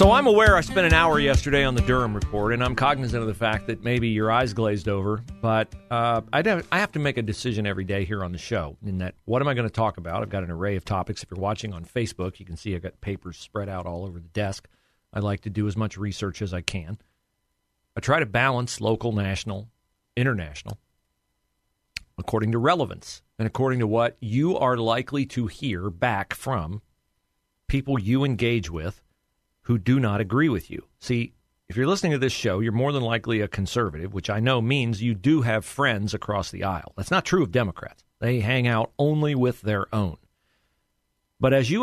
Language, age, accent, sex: English, 40-59, American, male